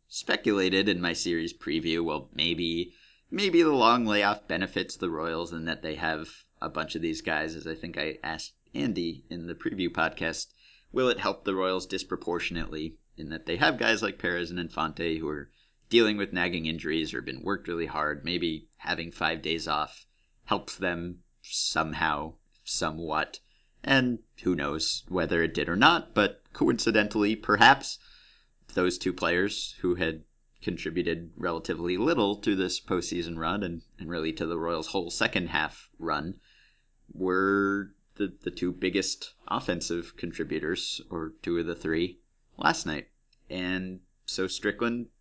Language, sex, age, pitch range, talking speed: English, male, 30-49, 85-105 Hz, 155 wpm